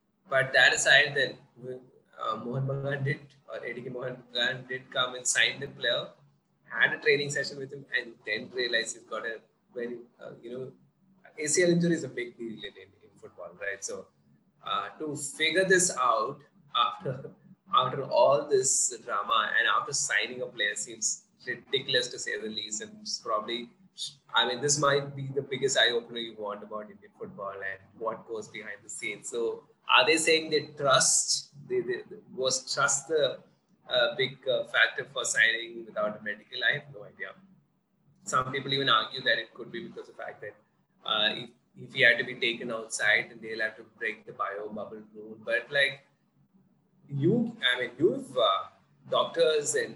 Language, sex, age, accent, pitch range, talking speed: English, male, 20-39, Indian, 120-190 Hz, 180 wpm